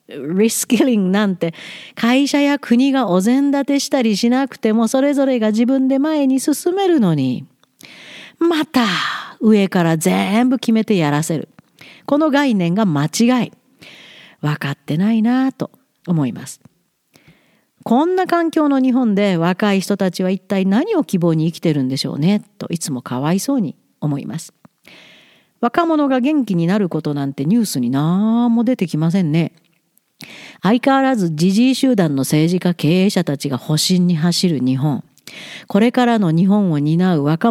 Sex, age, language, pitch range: female, 50-69, Japanese, 170-260 Hz